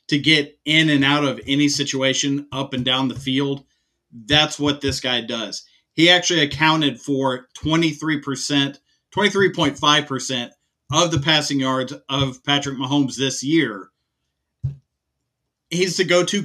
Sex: male